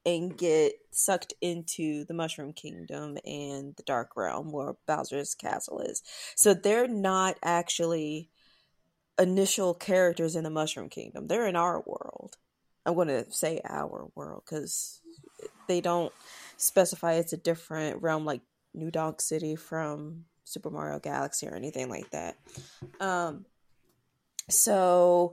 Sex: female